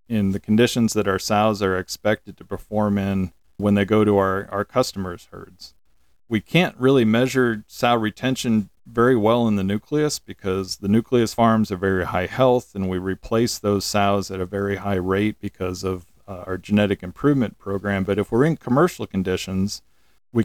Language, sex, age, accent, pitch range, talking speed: English, male, 40-59, American, 95-115 Hz, 180 wpm